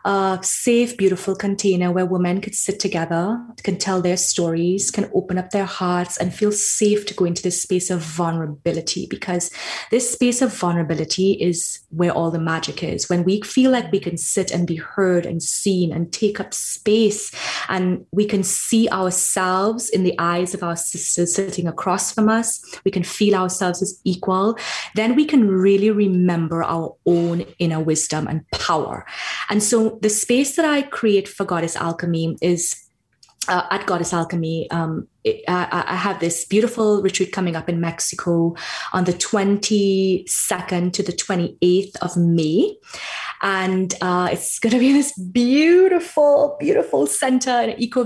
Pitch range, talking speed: 175-210 Hz, 165 wpm